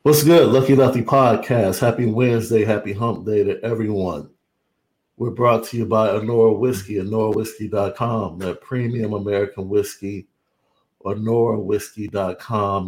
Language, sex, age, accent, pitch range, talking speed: English, male, 50-69, American, 105-130 Hz, 115 wpm